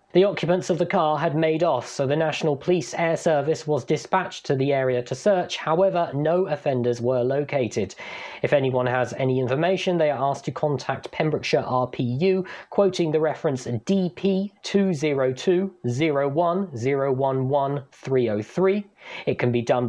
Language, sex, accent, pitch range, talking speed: English, male, British, 130-185 Hz, 170 wpm